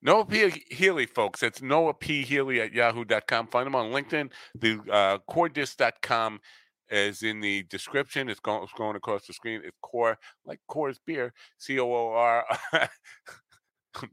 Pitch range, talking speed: 100-135 Hz, 165 wpm